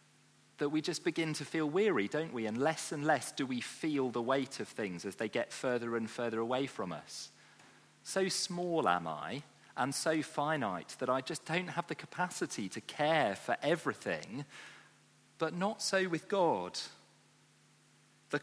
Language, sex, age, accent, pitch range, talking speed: English, male, 40-59, British, 120-165 Hz, 175 wpm